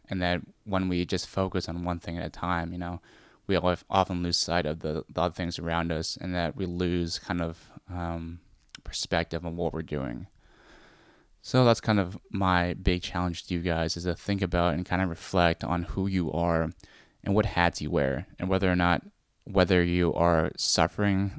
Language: English